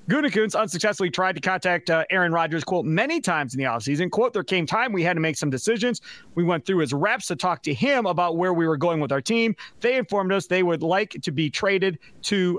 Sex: male